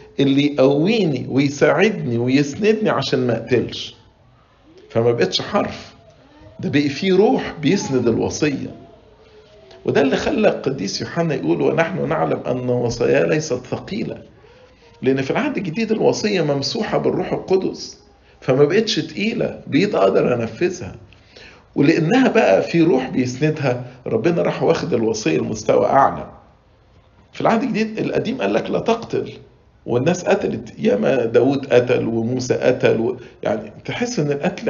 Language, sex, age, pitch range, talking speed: English, male, 50-69, 115-170 Hz, 125 wpm